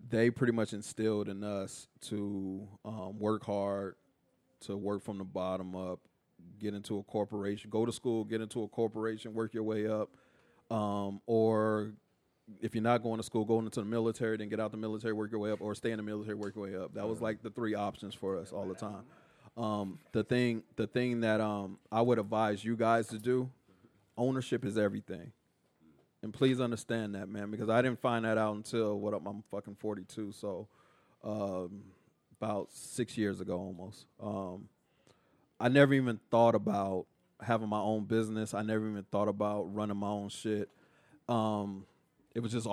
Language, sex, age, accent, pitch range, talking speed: English, male, 30-49, American, 100-115 Hz, 190 wpm